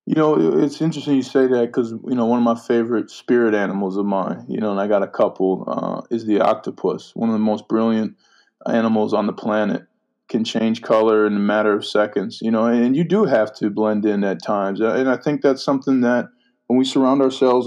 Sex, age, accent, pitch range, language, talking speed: male, 20-39, American, 110-125 Hz, English, 230 wpm